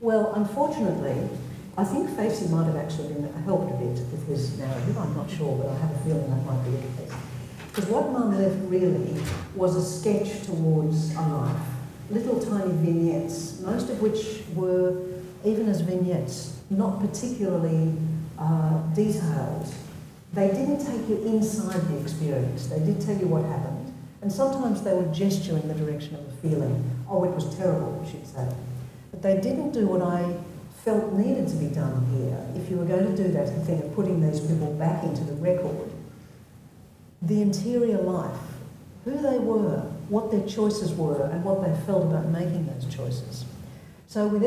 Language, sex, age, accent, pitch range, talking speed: English, female, 60-79, Australian, 150-195 Hz, 175 wpm